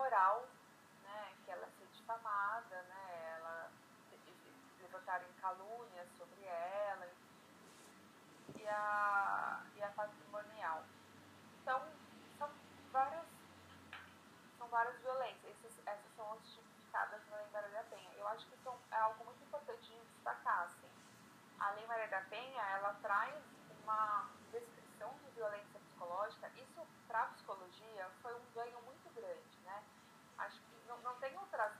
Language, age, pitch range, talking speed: Portuguese, 20-39, 190-230 Hz, 130 wpm